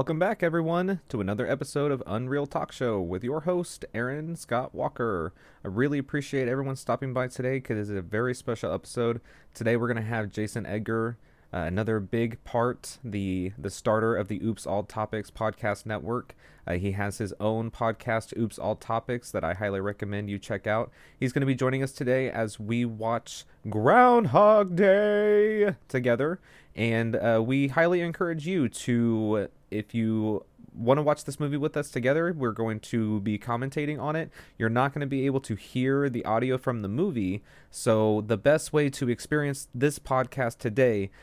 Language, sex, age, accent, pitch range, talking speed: English, male, 30-49, American, 105-135 Hz, 180 wpm